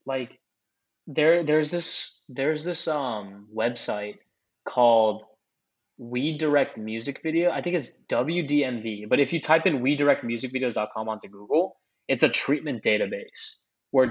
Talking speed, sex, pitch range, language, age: 130 wpm, male, 115-155 Hz, English, 20-39